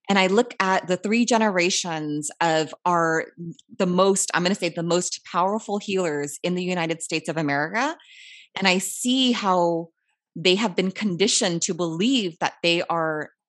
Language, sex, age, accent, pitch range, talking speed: English, female, 20-39, American, 165-230 Hz, 170 wpm